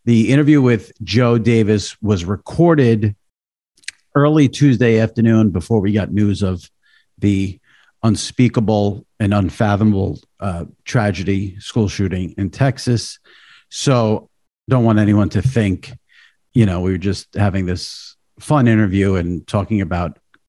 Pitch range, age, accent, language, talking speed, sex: 95-120 Hz, 50-69, American, English, 125 wpm, male